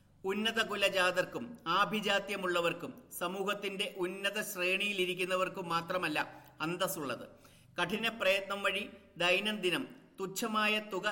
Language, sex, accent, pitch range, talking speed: Malayalam, male, native, 180-205 Hz, 85 wpm